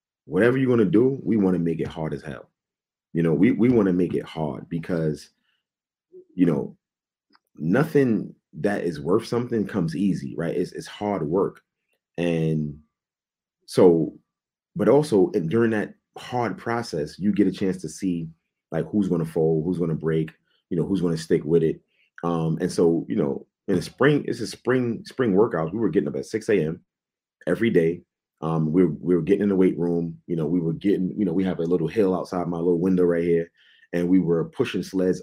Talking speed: 210 wpm